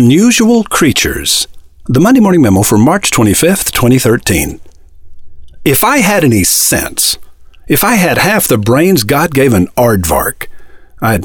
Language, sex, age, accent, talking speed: English, male, 50-69, American, 140 wpm